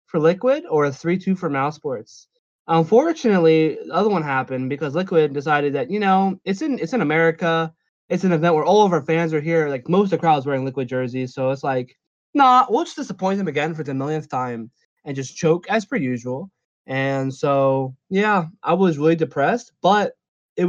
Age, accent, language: 20-39, American, English